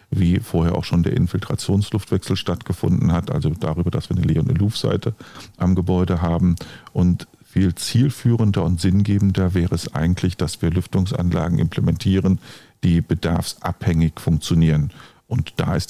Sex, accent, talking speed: male, German, 135 wpm